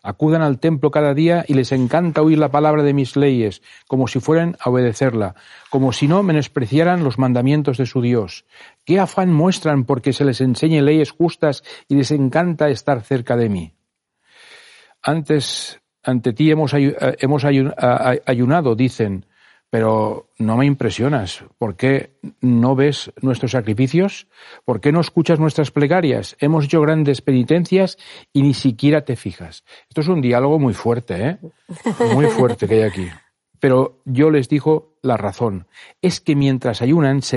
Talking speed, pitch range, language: 160 wpm, 125-155 Hz, Spanish